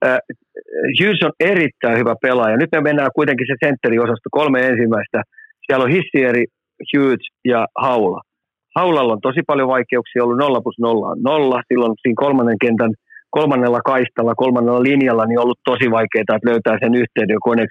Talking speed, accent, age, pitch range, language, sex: 165 wpm, native, 40-59, 115-135 Hz, Finnish, male